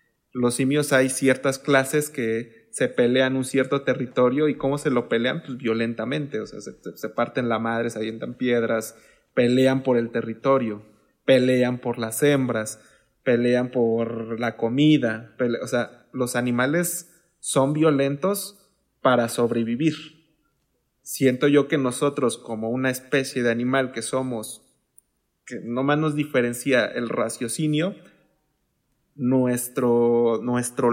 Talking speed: 130 wpm